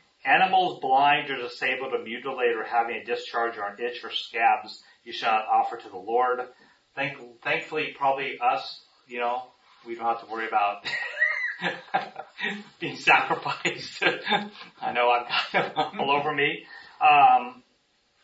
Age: 40-59